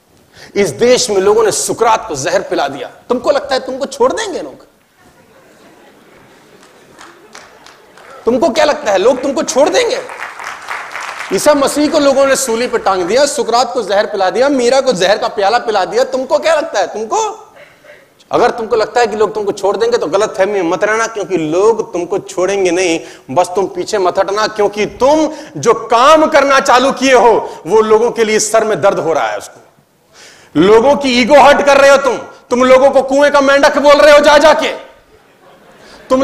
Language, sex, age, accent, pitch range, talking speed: Hindi, male, 40-59, native, 230-305 Hz, 190 wpm